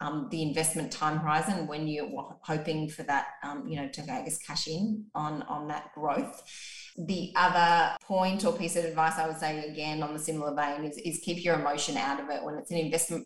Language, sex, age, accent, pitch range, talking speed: English, female, 20-39, Australian, 155-185 Hz, 215 wpm